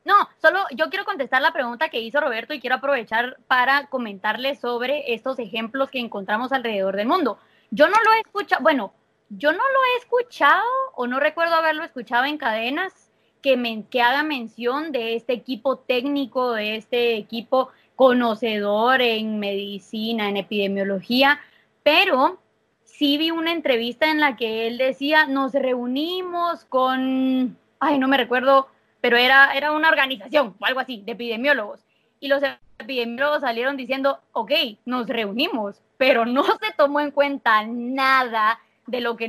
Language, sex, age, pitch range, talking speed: Spanish, female, 20-39, 235-295 Hz, 155 wpm